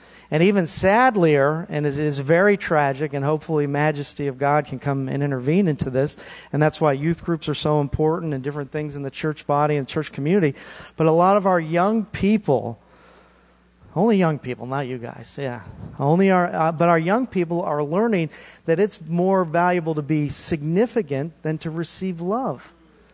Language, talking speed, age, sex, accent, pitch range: English, 185 wpm, 40-59, male, American, 140-175 Hz